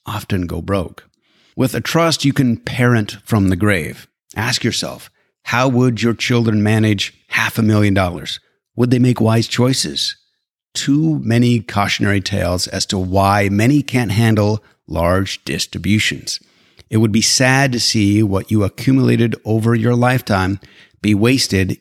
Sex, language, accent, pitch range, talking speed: male, English, American, 100-125 Hz, 150 wpm